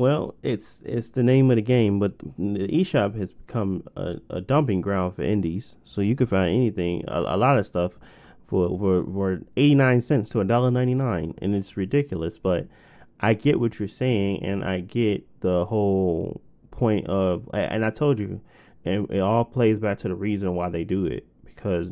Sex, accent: male, American